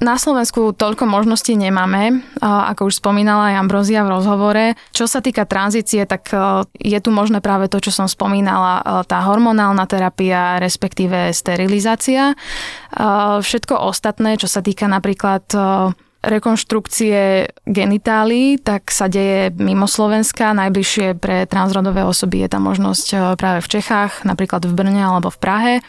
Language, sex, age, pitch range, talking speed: Slovak, female, 20-39, 185-210 Hz, 135 wpm